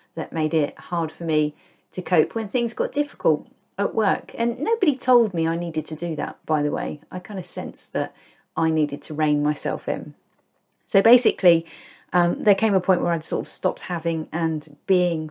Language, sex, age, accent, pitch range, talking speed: English, female, 30-49, British, 160-195 Hz, 205 wpm